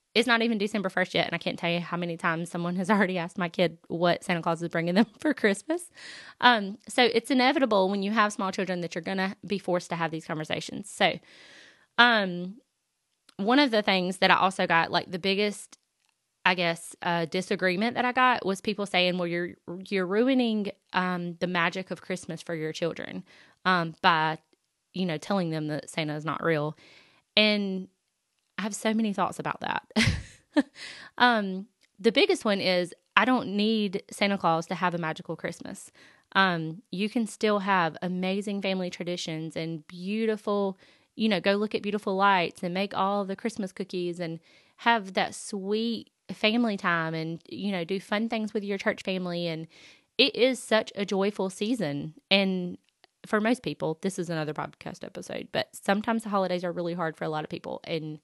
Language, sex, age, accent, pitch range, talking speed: English, female, 20-39, American, 175-210 Hz, 190 wpm